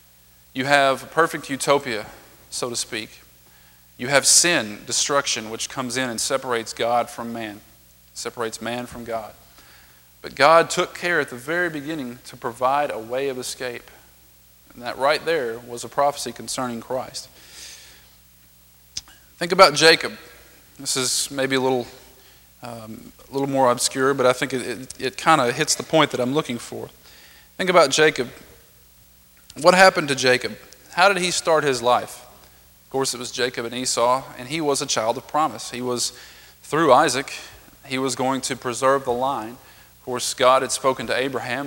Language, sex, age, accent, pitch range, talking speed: English, male, 40-59, American, 115-140 Hz, 175 wpm